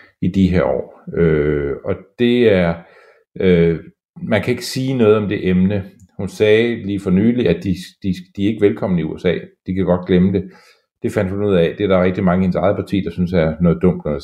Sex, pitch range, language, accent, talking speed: male, 90-105 Hz, Danish, native, 235 wpm